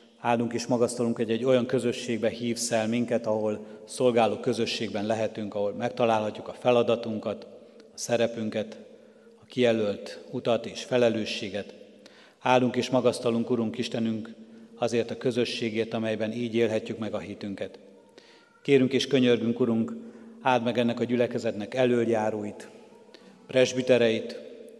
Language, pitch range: Hungarian, 110-125 Hz